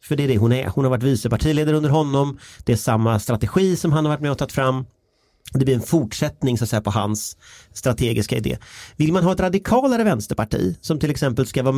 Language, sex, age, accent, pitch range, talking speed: English, male, 30-49, Swedish, 110-135 Hz, 235 wpm